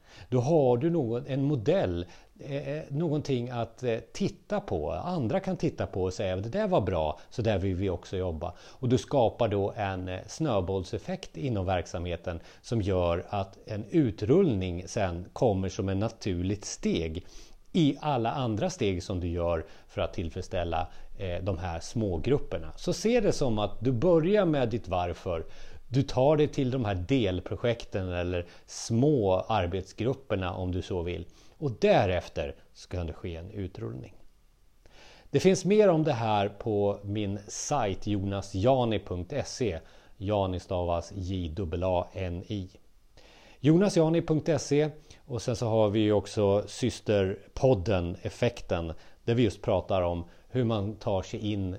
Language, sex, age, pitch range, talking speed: Swedish, male, 30-49, 90-125 Hz, 140 wpm